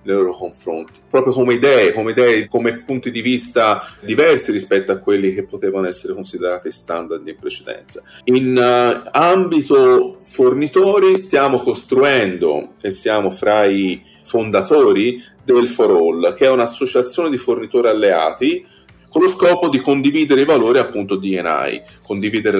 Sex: male